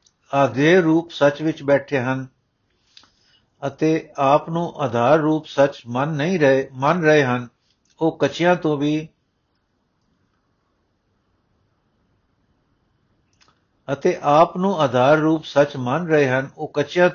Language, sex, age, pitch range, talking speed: Punjabi, male, 60-79, 130-160 Hz, 115 wpm